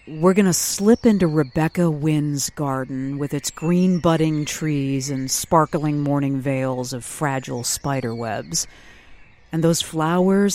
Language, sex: English, female